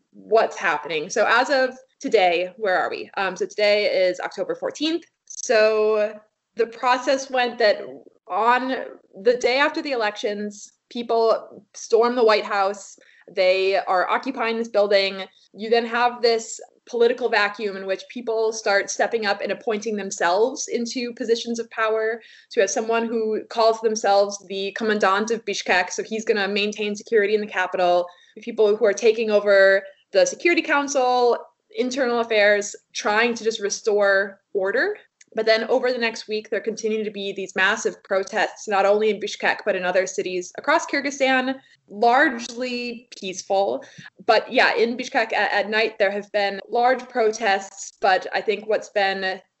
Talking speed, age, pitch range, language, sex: 160 wpm, 20-39, 200-240 Hz, English, female